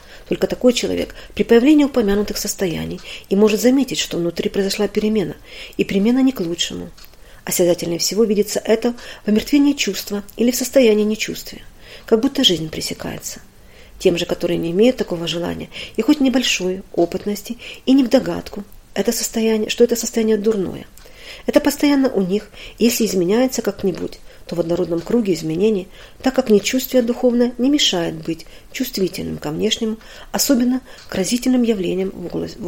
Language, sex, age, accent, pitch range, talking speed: Russian, female, 40-59, native, 185-245 Hz, 145 wpm